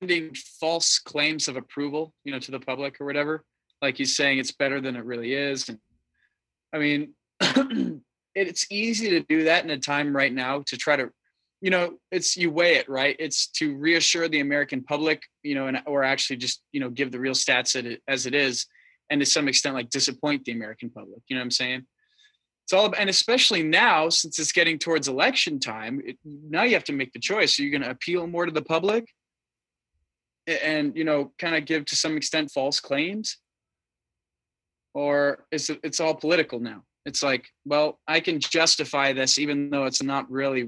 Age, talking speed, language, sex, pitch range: 20-39, 200 wpm, English, male, 135-160 Hz